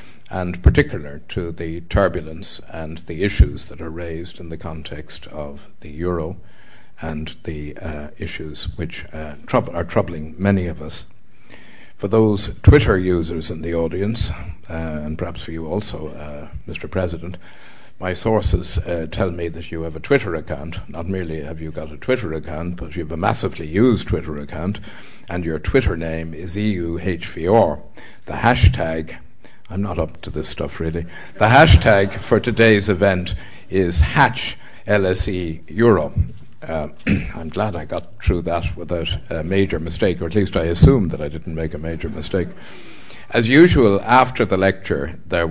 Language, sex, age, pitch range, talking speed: English, male, 60-79, 80-95 Hz, 160 wpm